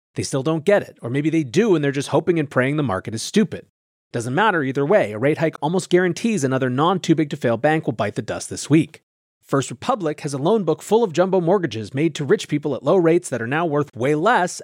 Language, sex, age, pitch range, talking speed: English, male, 30-49, 115-165 Hz, 245 wpm